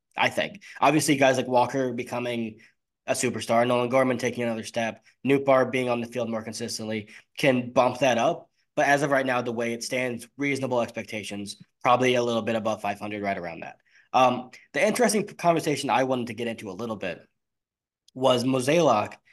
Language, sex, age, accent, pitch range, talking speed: English, male, 20-39, American, 115-135 Hz, 185 wpm